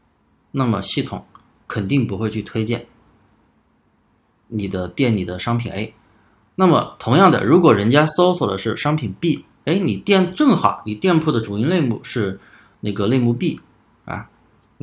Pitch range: 105-145 Hz